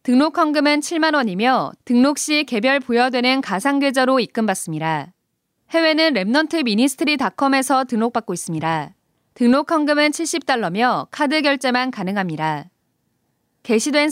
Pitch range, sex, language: 225-290 Hz, female, Korean